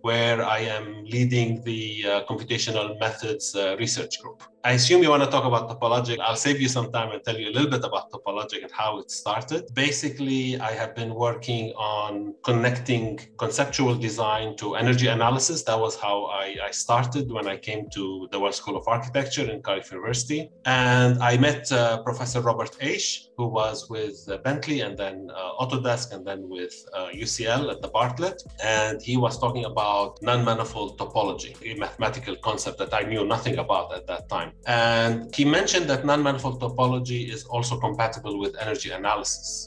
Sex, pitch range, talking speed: male, 110-125 Hz, 185 wpm